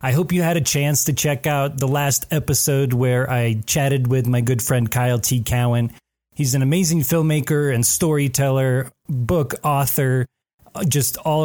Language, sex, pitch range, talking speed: English, male, 125-155 Hz, 170 wpm